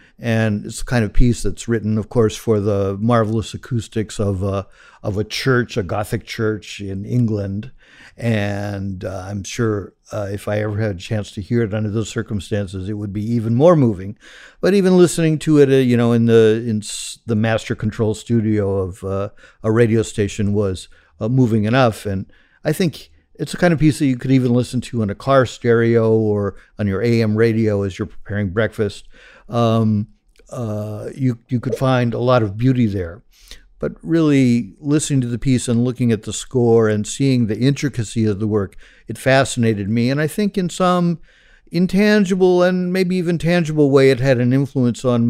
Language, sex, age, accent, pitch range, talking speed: English, male, 50-69, American, 105-130 Hz, 195 wpm